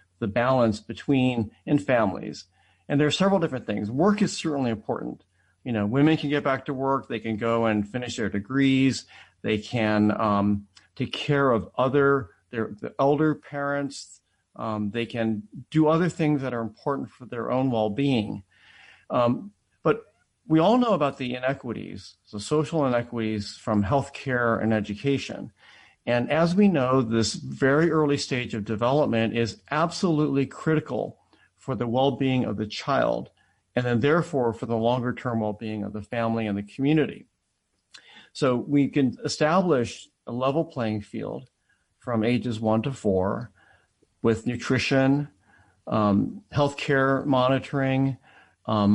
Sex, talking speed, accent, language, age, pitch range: male, 150 wpm, American, English, 40-59, 110-140 Hz